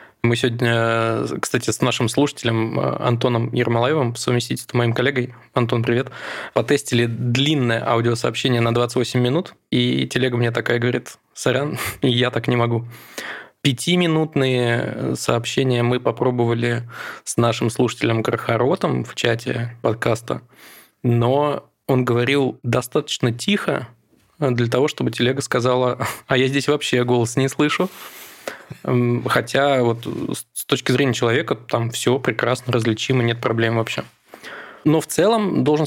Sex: male